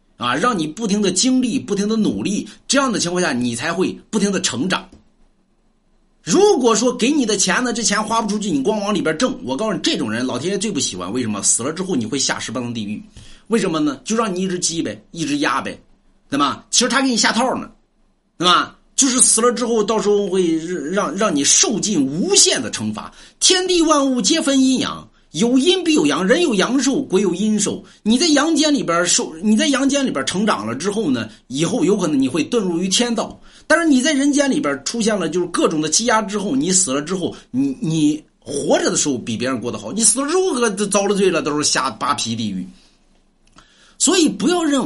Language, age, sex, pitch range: Chinese, 50-69, male, 180-265 Hz